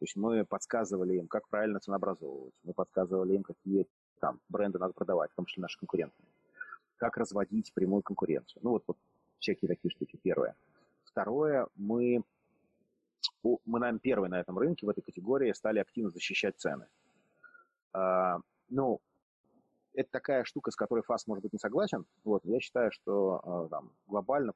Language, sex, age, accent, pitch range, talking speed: Russian, male, 30-49, native, 90-120 Hz, 160 wpm